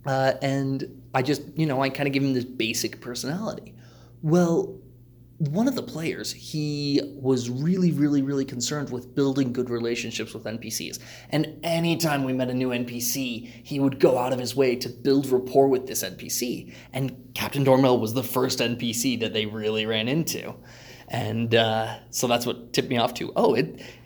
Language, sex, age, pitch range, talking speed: English, male, 20-39, 115-135 Hz, 185 wpm